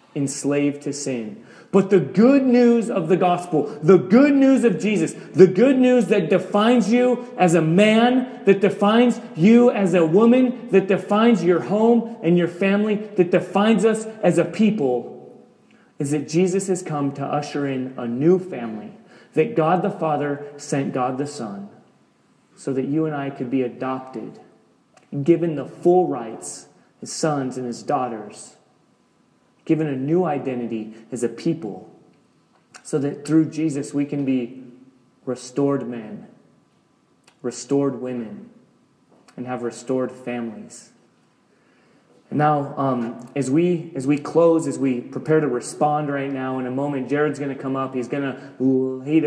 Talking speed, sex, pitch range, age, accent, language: 155 wpm, male, 130-185 Hz, 30-49, American, English